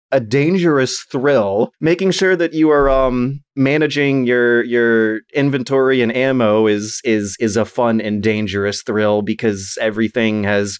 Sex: male